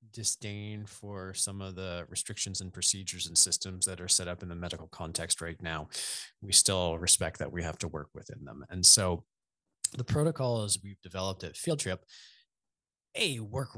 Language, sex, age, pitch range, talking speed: English, male, 30-49, 85-100 Hz, 180 wpm